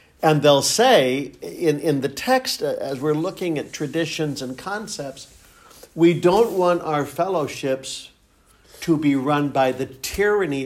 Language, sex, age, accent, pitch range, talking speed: English, male, 60-79, American, 135-165 Hz, 140 wpm